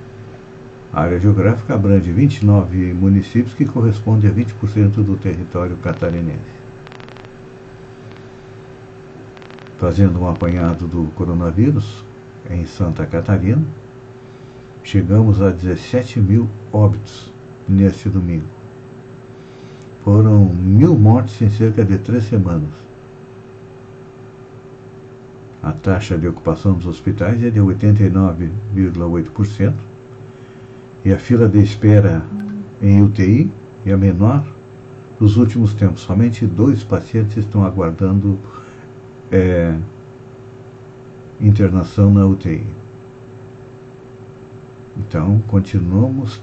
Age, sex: 60-79, male